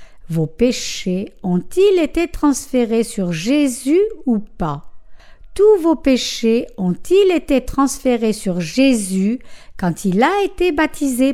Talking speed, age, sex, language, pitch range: 115 wpm, 60-79, female, French, 215-315 Hz